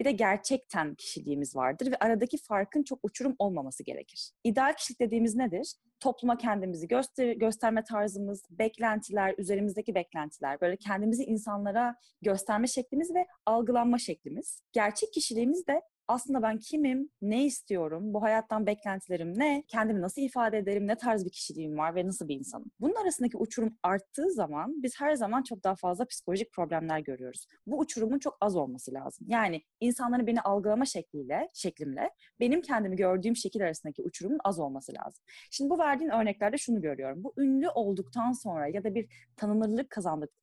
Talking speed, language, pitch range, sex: 155 wpm, Turkish, 185-250 Hz, female